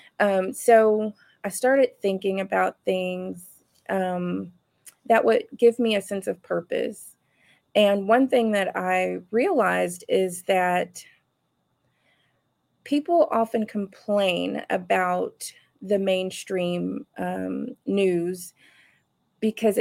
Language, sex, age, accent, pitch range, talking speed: English, female, 20-39, American, 180-215 Hz, 100 wpm